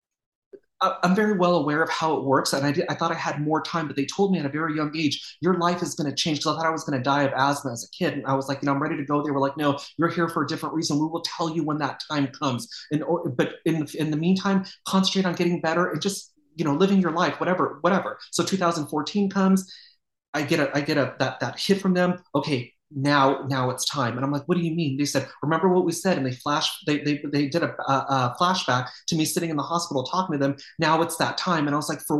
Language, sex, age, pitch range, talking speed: English, male, 30-49, 145-185 Hz, 285 wpm